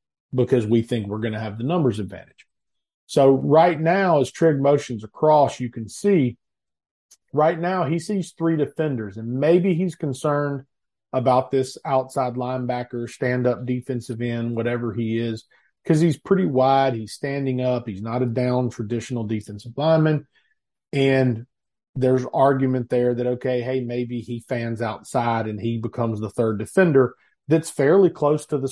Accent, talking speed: American, 160 wpm